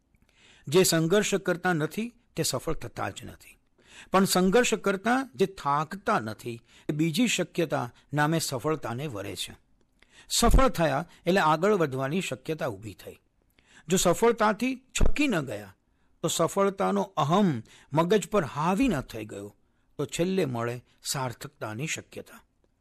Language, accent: Gujarati, native